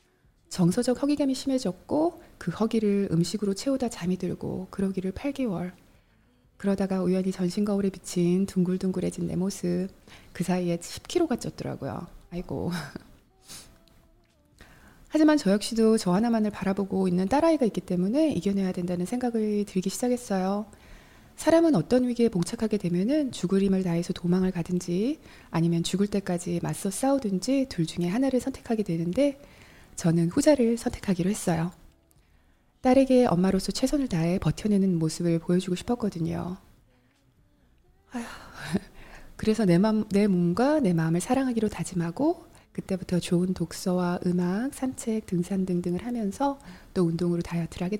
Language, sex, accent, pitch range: Korean, female, native, 175-235 Hz